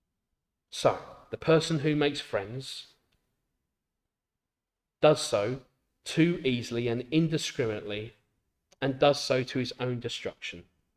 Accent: British